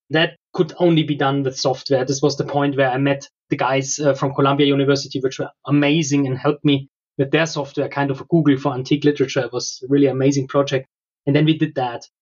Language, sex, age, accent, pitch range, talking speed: English, male, 20-39, German, 135-150 Hz, 230 wpm